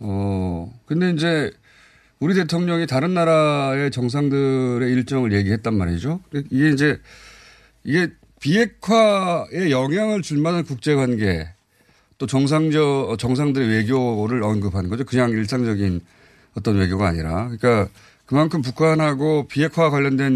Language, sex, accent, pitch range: Korean, male, native, 105-150 Hz